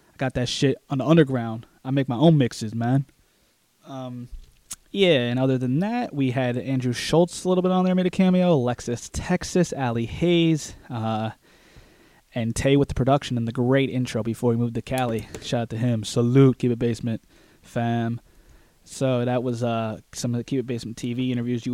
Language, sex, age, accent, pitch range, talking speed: English, male, 20-39, American, 115-140 Hz, 195 wpm